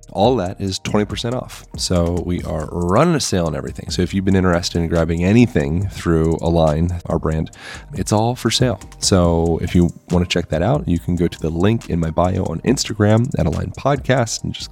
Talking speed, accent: 215 wpm, American